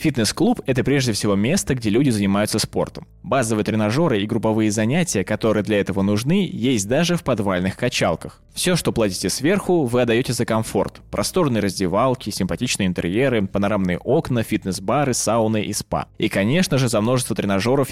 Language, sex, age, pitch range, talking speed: Russian, male, 20-39, 100-130 Hz, 155 wpm